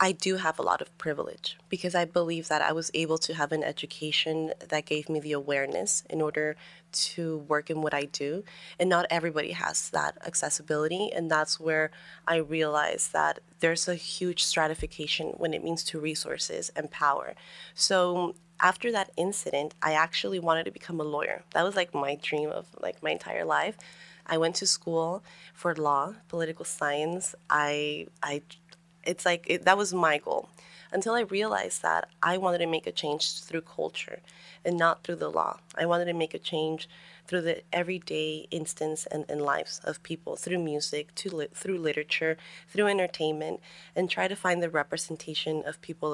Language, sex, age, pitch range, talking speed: English, female, 20-39, 155-175 Hz, 180 wpm